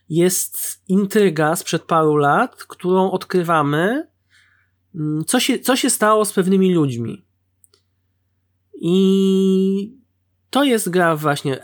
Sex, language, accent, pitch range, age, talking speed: male, Polish, native, 140-195 Hz, 20-39, 105 wpm